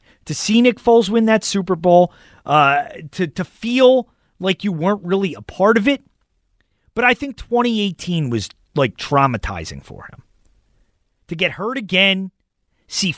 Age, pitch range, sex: 30-49, 150-200 Hz, male